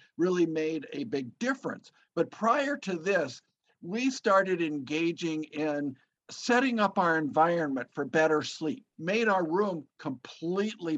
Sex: male